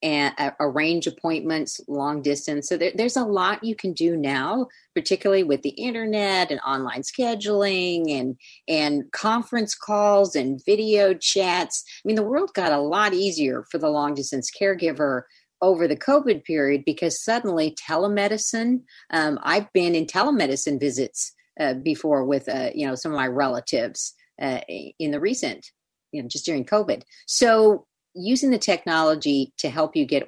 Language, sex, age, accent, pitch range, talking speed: English, female, 40-59, American, 150-210 Hz, 160 wpm